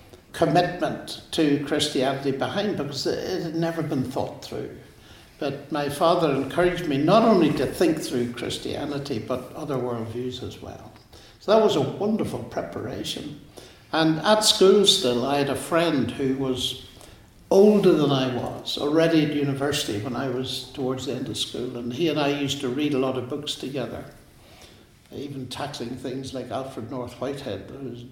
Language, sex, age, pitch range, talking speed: English, male, 60-79, 130-160 Hz, 170 wpm